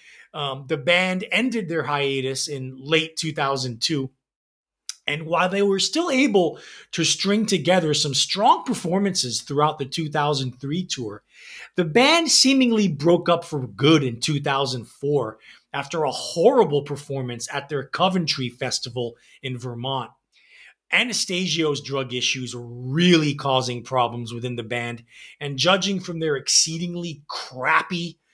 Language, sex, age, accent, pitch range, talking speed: English, male, 30-49, American, 130-170 Hz, 125 wpm